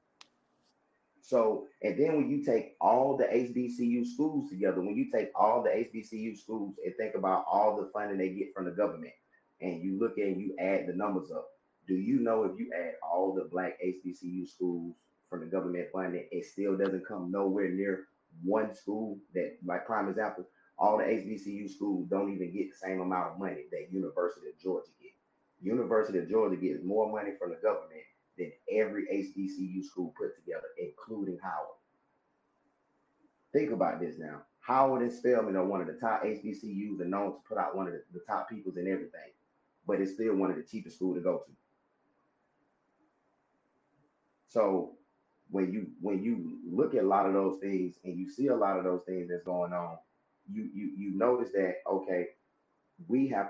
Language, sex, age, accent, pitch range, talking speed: English, male, 30-49, American, 90-120 Hz, 185 wpm